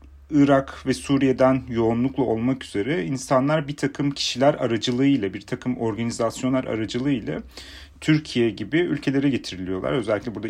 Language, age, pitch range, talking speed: Turkish, 40-59, 105-135 Hz, 120 wpm